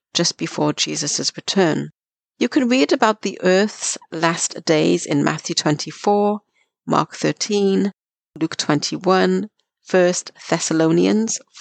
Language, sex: English, female